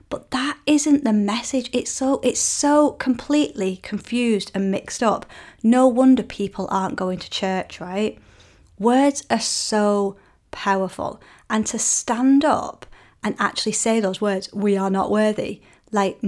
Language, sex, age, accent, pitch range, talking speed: English, female, 30-49, British, 190-215 Hz, 145 wpm